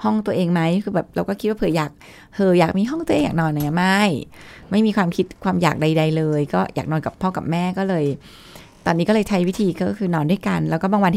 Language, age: Thai, 20-39